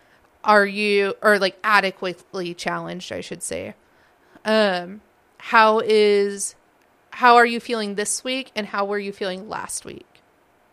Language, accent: English, American